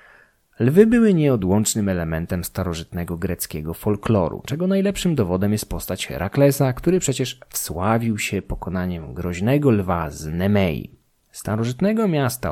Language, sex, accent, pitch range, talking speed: Polish, male, native, 95-140 Hz, 115 wpm